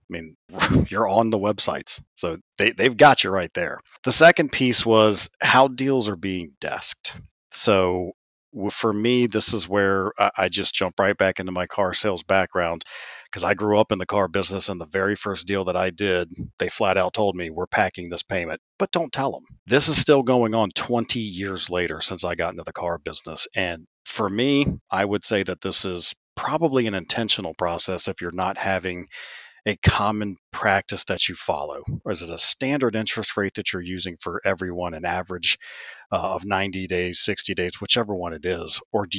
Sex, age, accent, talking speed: male, 40-59, American, 200 wpm